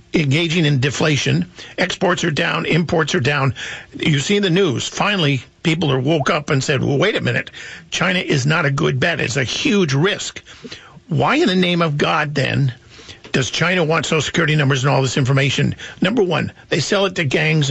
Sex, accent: male, American